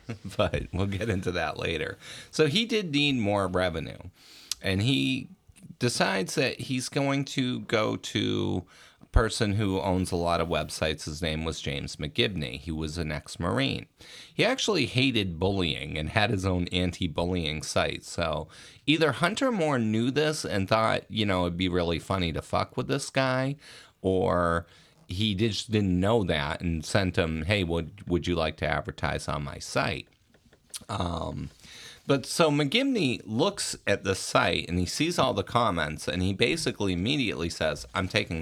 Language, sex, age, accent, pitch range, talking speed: English, male, 30-49, American, 90-130 Hz, 165 wpm